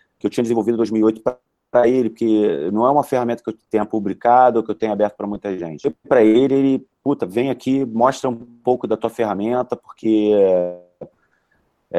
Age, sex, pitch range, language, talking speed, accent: 40-59, male, 105-125 Hz, Portuguese, 195 wpm, Brazilian